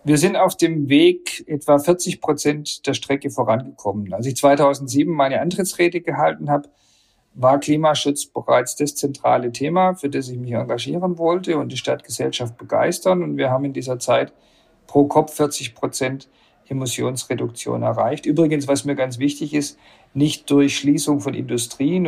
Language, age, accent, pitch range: German, 50-69, German, 125-155 Hz